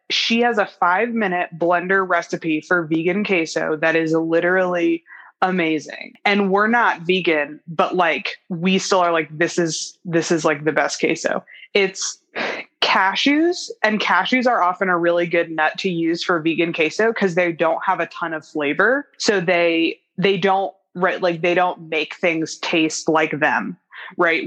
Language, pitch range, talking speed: English, 165-200 Hz, 170 wpm